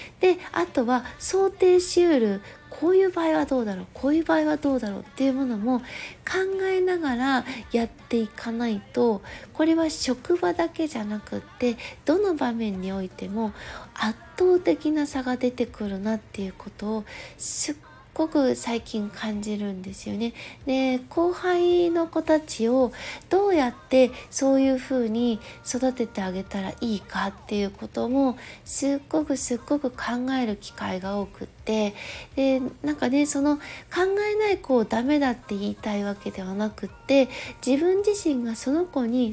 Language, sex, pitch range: Japanese, female, 220-315 Hz